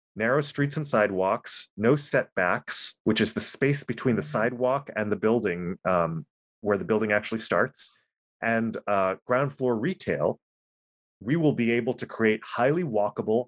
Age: 30-49